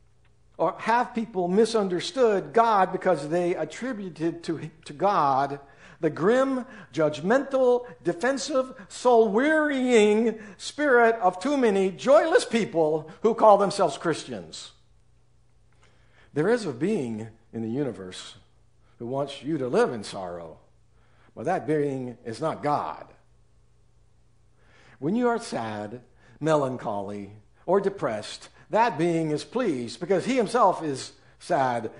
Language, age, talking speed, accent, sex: English, 60-79, 120 wpm, American, male